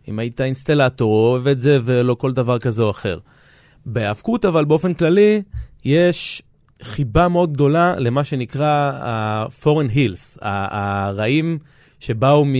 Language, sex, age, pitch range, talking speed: Hebrew, male, 30-49, 115-145 Hz, 125 wpm